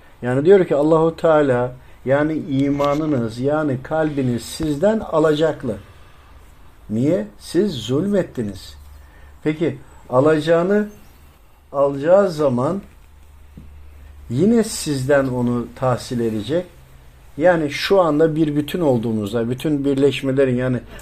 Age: 50-69